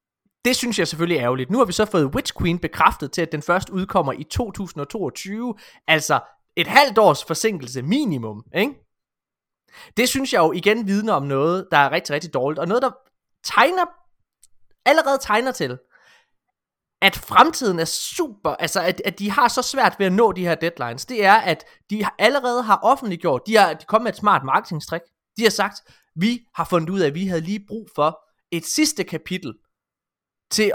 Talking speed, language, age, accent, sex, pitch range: 190 wpm, Danish, 20-39, native, male, 160-220 Hz